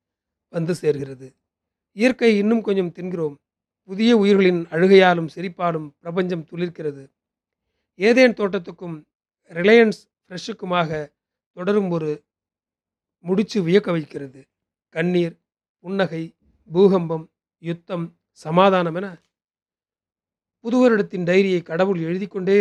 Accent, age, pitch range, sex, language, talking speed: native, 40-59, 155-200 Hz, male, Tamil, 85 wpm